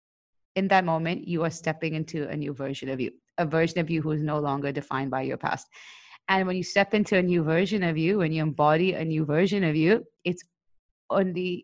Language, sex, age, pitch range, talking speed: English, female, 30-49, 150-190 Hz, 225 wpm